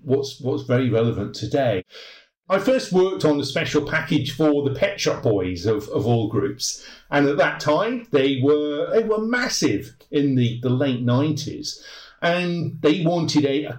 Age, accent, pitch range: 50-69, British, 130-160 Hz